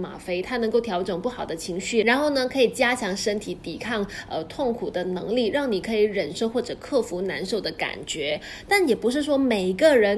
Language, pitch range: Chinese, 195-260 Hz